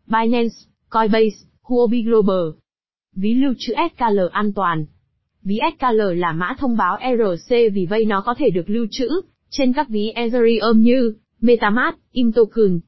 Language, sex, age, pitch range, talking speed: Vietnamese, female, 20-39, 210-255 Hz, 150 wpm